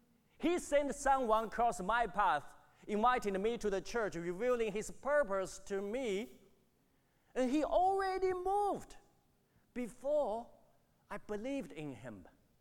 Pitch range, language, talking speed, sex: 135-215 Hz, English, 120 wpm, male